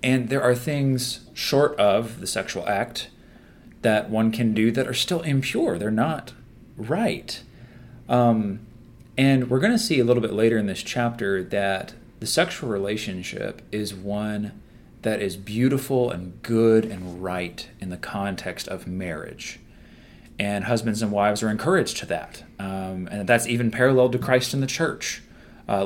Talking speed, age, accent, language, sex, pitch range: 160 wpm, 30-49, American, English, male, 100-120 Hz